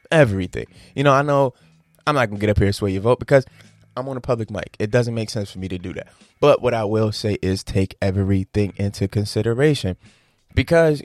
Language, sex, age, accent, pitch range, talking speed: English, male, 20-39, American, 100-125 Hz, 230 wpm